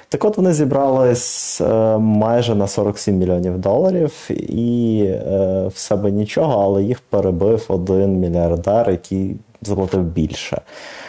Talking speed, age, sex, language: 115 wpm, 20-39, male, Ukrainian